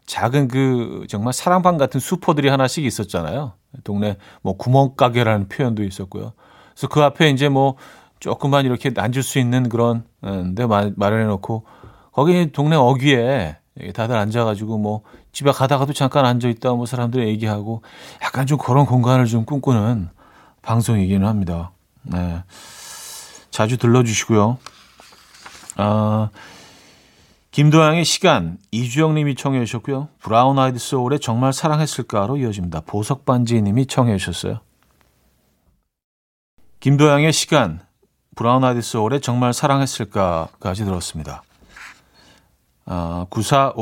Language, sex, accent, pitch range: Korean, male, native, 105-140 Hz